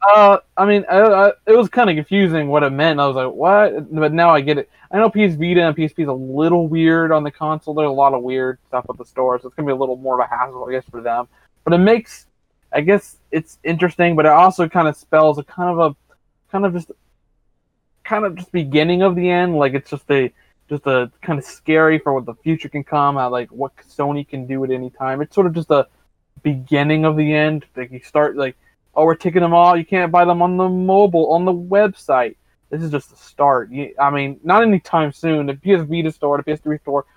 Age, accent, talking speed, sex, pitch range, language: 20-39, American, 250 wpm, male, 130-170 Hz, English